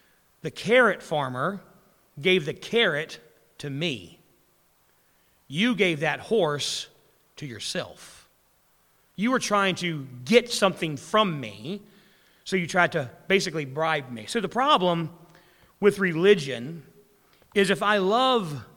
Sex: male